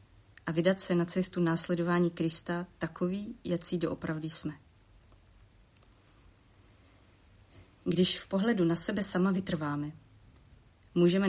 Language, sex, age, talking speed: Czech, female, 30-49, 100 wpm